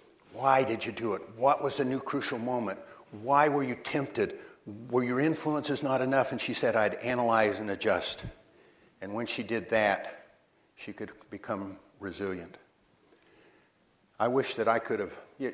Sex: male